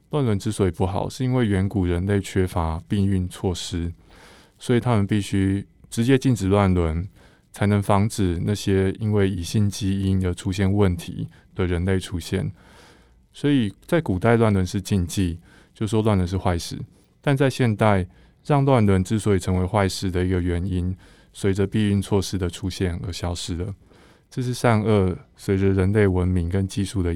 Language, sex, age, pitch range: Chinese, male, 20-39, 90-105 Hz